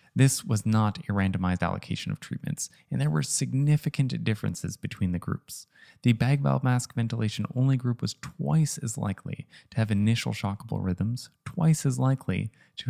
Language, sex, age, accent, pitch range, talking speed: English, male, 20-39, American, 100-140 Hz, 170 wpm